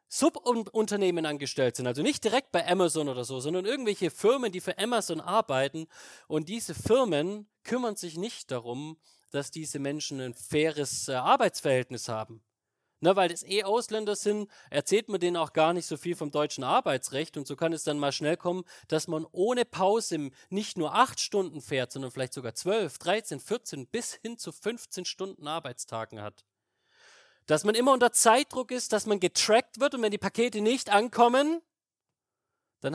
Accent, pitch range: German, 145-210 Hz